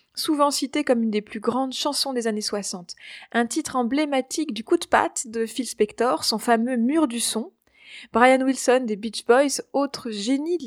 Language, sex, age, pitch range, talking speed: French, female, 20-39, 210-265 Hz, 190 wpm